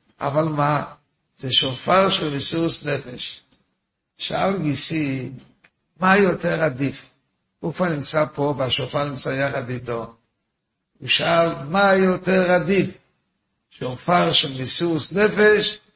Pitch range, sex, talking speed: 130-170 Hz, male, 110 wpm